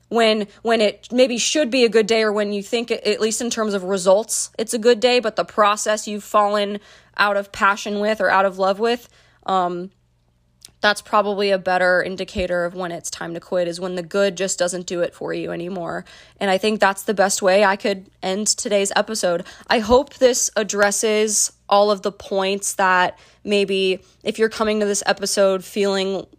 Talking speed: 200 wpm